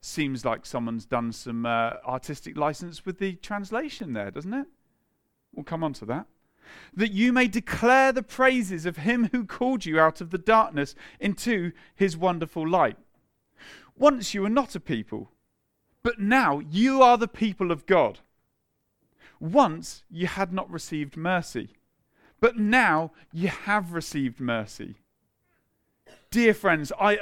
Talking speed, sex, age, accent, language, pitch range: 150 wpm, male, 40-59, British, English, 135-210 Hz